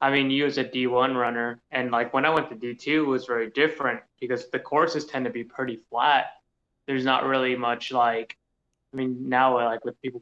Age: 20-39